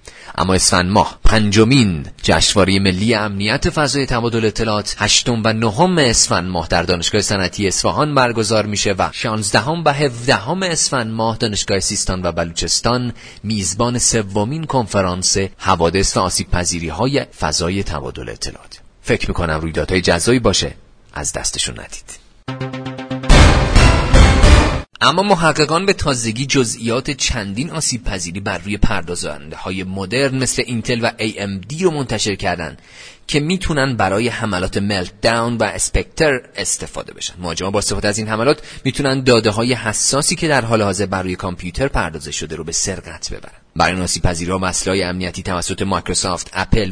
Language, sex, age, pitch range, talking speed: Persian, male, 30-49, 95-125 Hz, 140 wpm